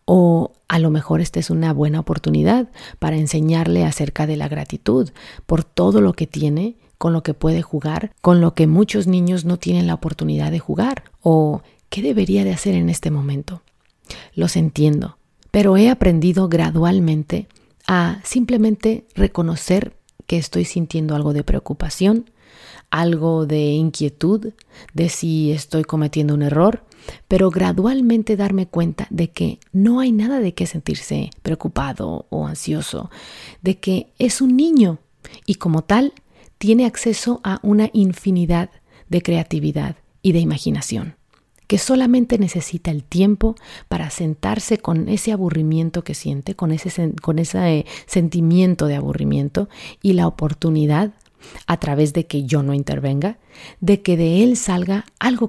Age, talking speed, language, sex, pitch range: 40-59, 150 wpm, Spanish, female, 155-200 Hz